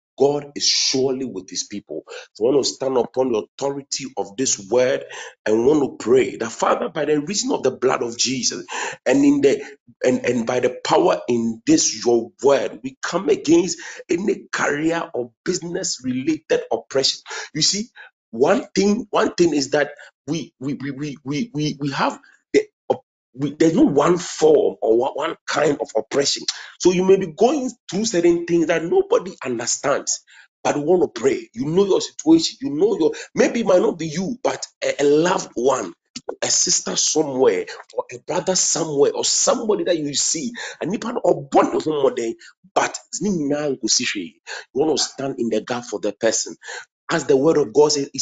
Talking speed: 185 wpm